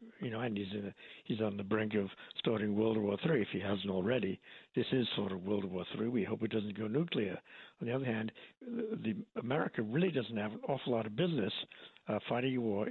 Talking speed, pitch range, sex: 230 wpm, 110-130 Hz, male